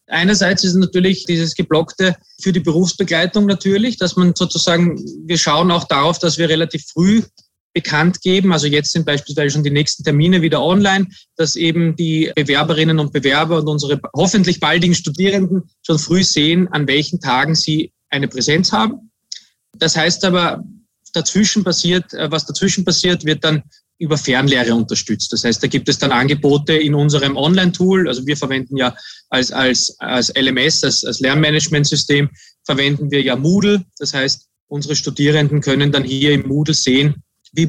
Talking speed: 160 wpm